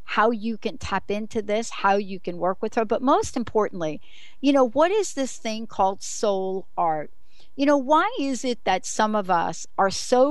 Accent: American